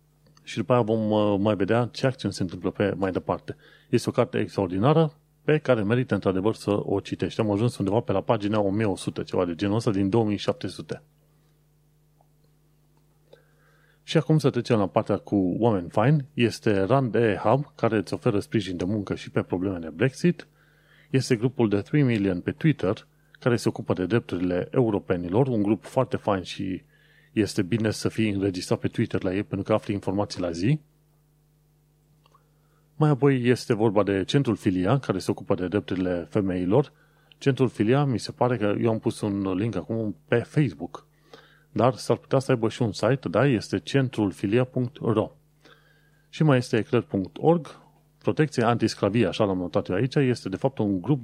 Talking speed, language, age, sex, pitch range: 170 wpm, Romanian, 30-49, male, 100-145 Hz